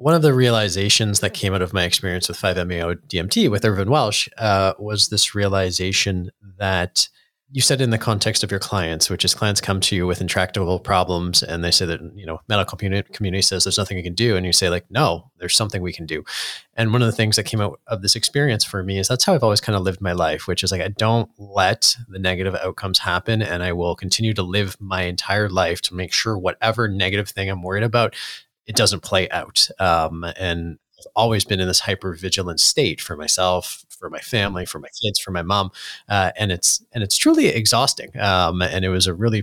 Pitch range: 90-110 Hz